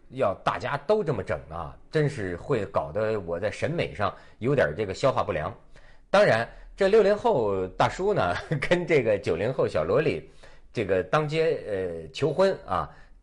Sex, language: male, Chinese